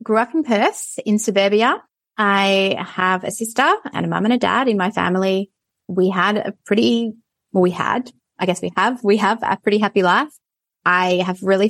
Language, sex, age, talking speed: English, female, 20-39, 200 wpm